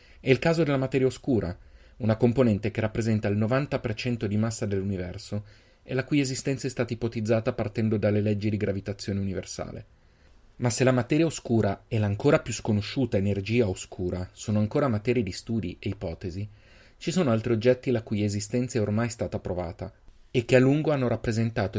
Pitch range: 100-125 Hz